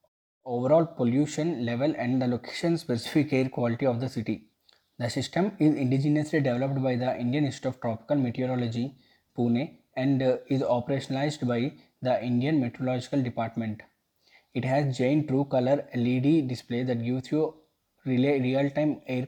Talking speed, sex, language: 140 wpm, male, English